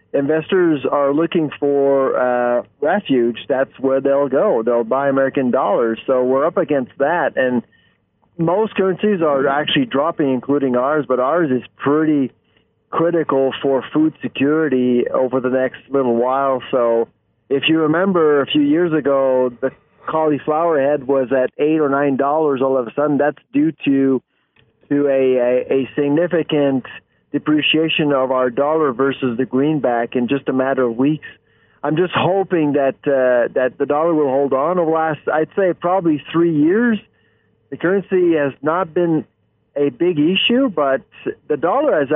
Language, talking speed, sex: English, 160 wpm, male